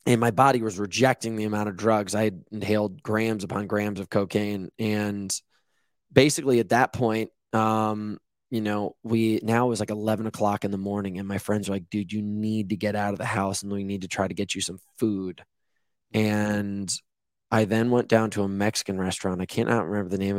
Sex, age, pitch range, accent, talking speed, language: male, 20-39, 100-115 Hz, American, 205 wpm, English